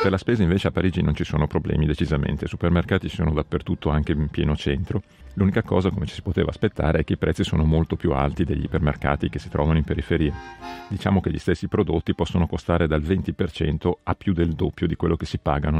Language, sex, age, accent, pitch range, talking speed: Italian, male, 40-59, native, 80-95 Hz, 225 wpm